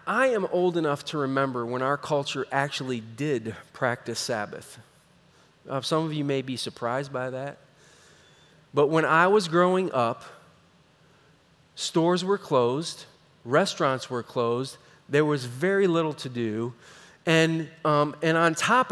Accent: American